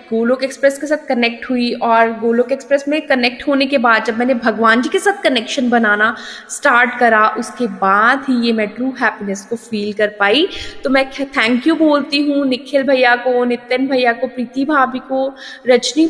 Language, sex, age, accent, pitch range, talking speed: Hindi, female, 20-39, native, 240-300 Hz, 190 wpm